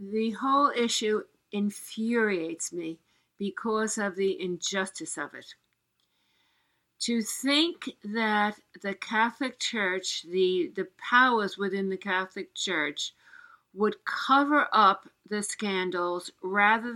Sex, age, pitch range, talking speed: female, 50-69, 195-240 Hz, 105 wpm